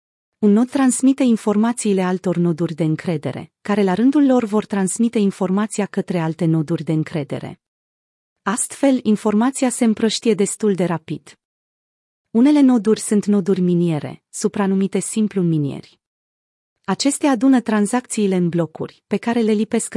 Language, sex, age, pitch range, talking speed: Romanian, female, 30-49, 175-225 Hz, 130 wpm